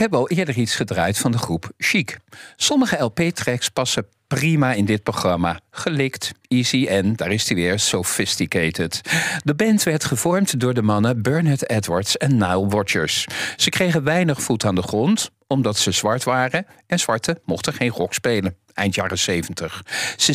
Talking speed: 170 wpm